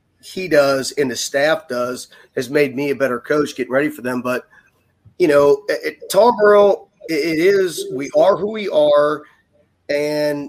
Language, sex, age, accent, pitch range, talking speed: English, male, 30-49, American, 145-175 Hz, 165 wpm